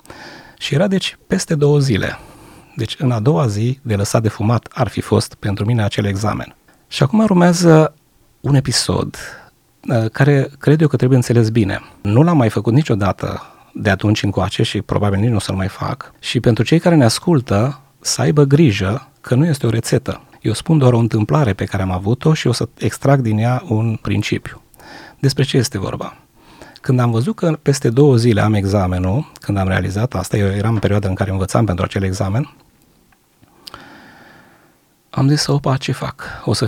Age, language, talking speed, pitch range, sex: 30-49, Romanian, 190 wpm, 105-140 Hz, male